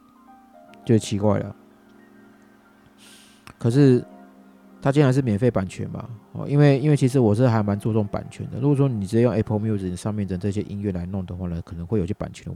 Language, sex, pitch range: Chinese, male, 95-125 Hz